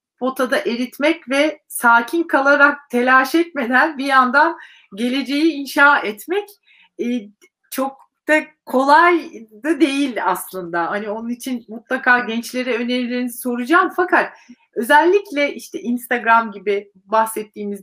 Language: Turkish